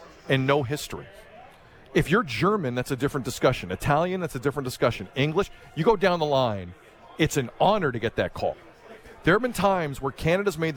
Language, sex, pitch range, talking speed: English, male, 135-180 Hz, 195 wpm